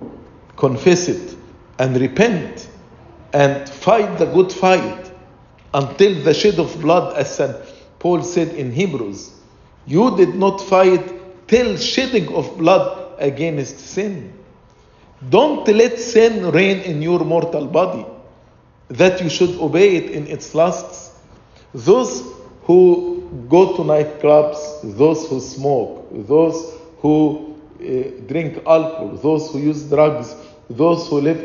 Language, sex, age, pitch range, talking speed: English, male, 50-69, 150-200 Hz, 125 wpm